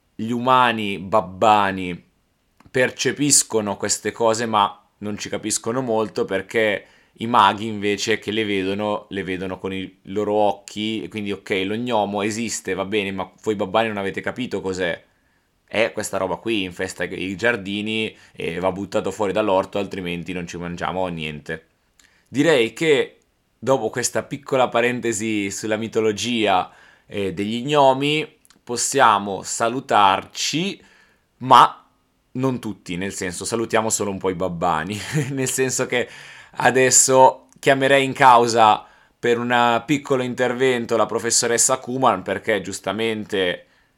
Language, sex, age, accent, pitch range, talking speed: Italian, male, 20-39, native, 95-120 Hz, 130 wpm